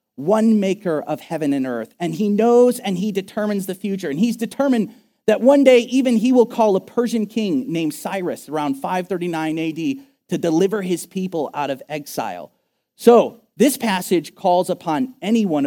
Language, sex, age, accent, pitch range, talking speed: English, male, 40-59, American, 155-220 Hz, 175 wpm